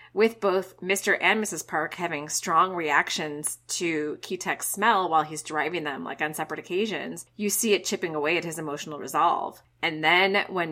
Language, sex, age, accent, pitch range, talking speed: English, female, 30-49, American, 155-195 Hz, 180 wpm